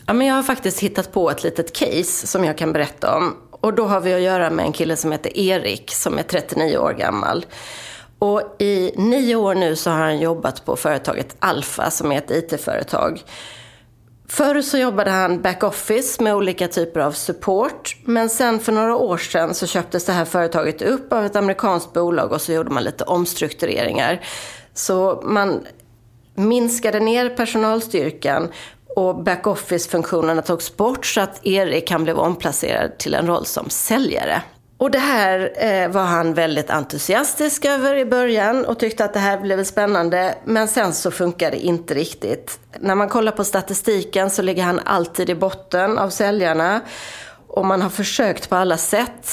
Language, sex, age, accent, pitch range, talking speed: Swedish, female, 30-49, native, 170-210 Hz, 180 wpm